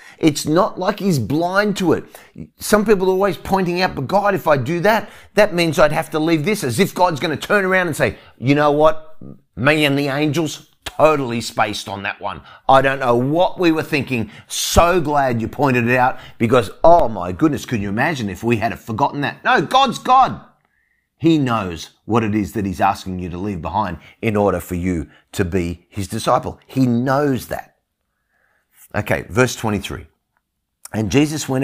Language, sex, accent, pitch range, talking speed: English, male, Australian, 100-150 Hz, 195 wpm